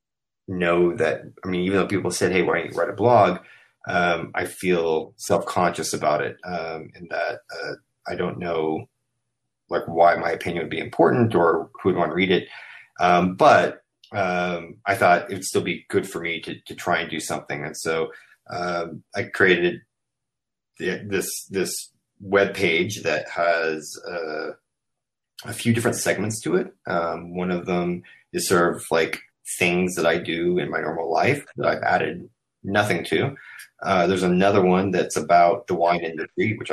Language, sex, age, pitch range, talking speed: English, male, 30-49, 85-100 Hz, 175 wpm